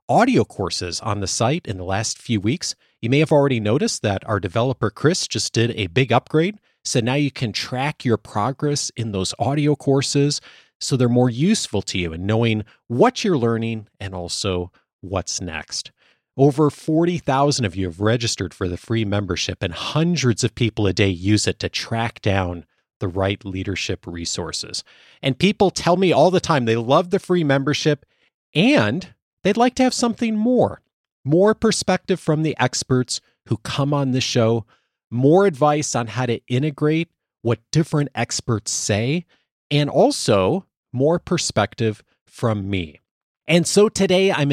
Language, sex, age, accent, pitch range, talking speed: English, male, 40-59, American, 105-150 Hz, 165 wpm